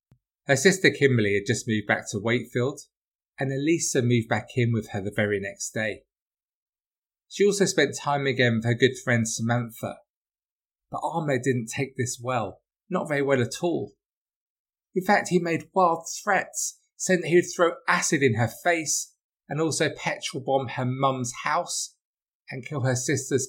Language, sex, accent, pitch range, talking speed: English, male, British, 120-150 Hz, 170 wpm